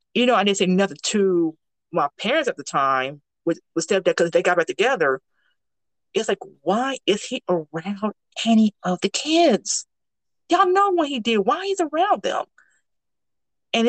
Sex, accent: female, American